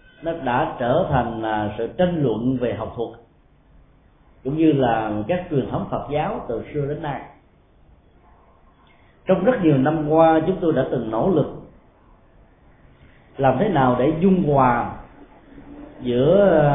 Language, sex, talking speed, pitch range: Vietnamese, male, 145 wpm, 120-165 Hz